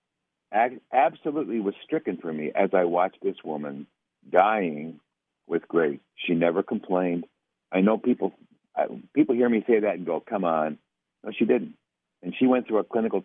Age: 60-79